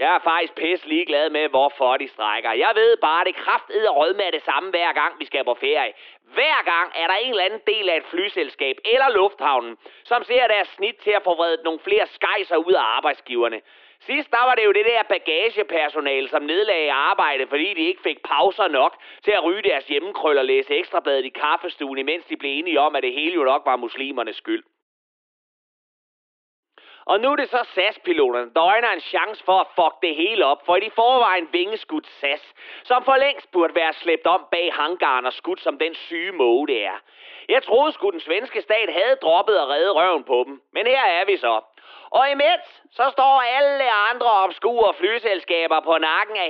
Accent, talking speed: native, 205 wpm